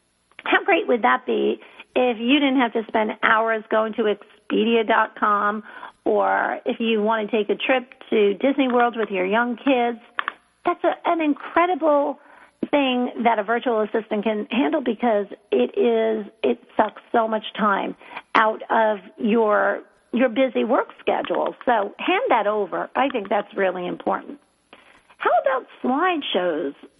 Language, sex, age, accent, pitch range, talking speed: English, female, 50-69, American, 220-270 Hz, 150 wpm